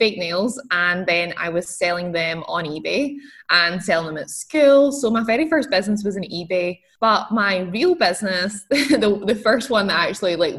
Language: English